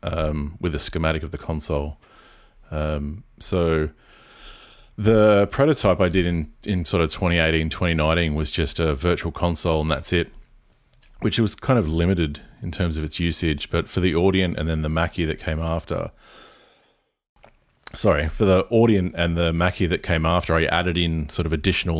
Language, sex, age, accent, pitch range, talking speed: English, male, 30-49, Australian, 75-90 Hz, 175 wpm